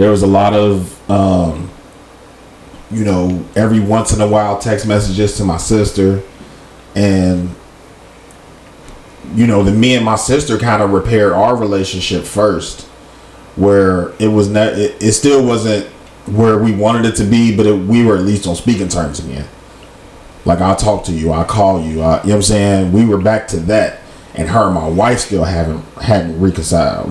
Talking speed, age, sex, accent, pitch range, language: 190 wpm, 30-49, male, American, 90-110 Hz, English